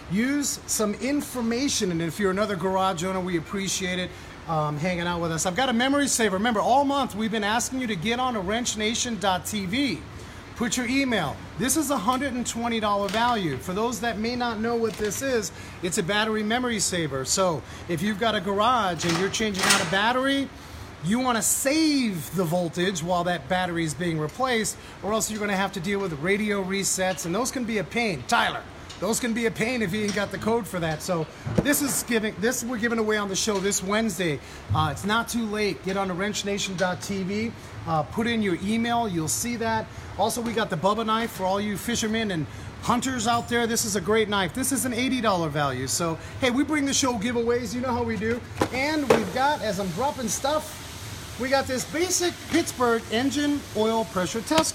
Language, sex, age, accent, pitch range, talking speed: English, male, 30-49, American, 190-245 Hz, 210 wpm